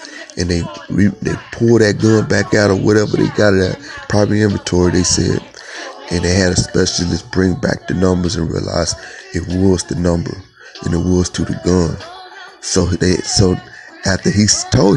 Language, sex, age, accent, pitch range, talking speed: English, male, 30-49, American, 90-110 Hz, 185 wpm